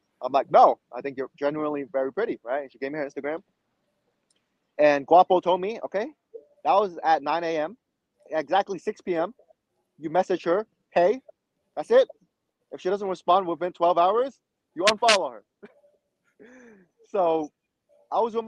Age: 20-39